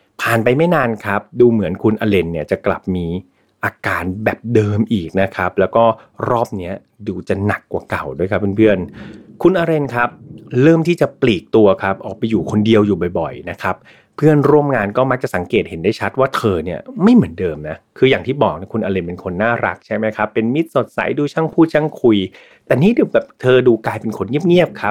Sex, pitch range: male, 95-130 Hz